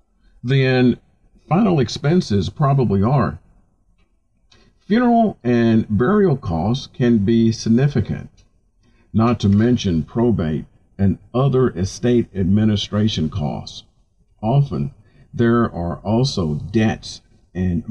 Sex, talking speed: male, 90 wpm